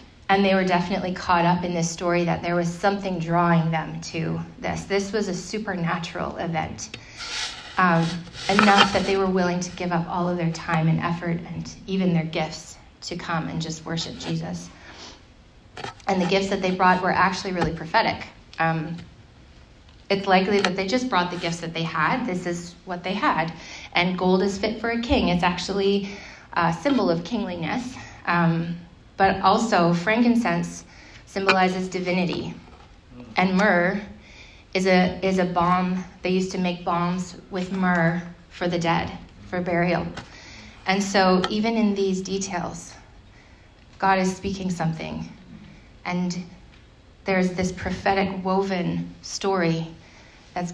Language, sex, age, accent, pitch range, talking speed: English, female, 30-49, American, 165-190 Hz, 155 wpm